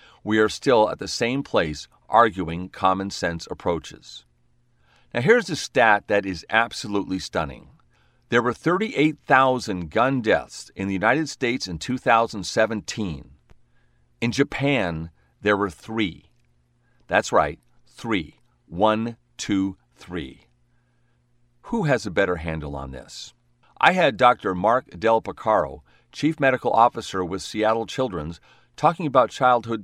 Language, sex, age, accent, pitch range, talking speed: English, male, 50-69, American, 90-125 Hz, 125 wpm